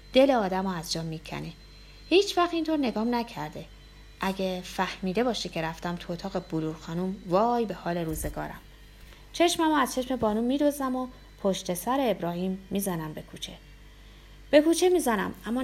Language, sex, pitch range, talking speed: Persian, female, 180-250 Hz, 150 wpm